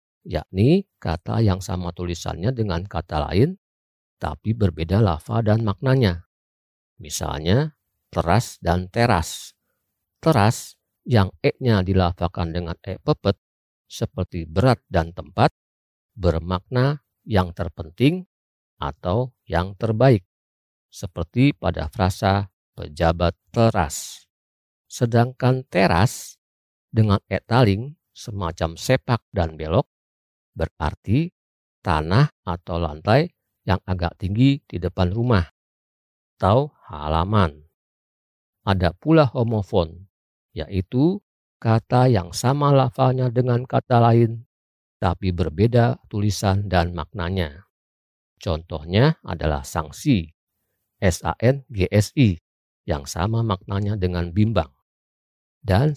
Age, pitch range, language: 50-69, 85-120 Hz, Indonesian